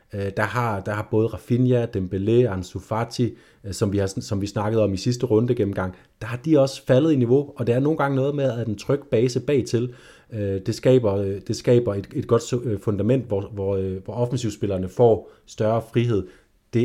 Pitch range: 100-125 Hz